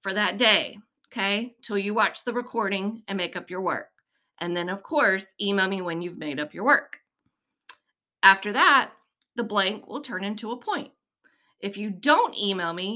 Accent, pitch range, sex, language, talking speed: American, 190-255 Hz, female, English, 185 wpm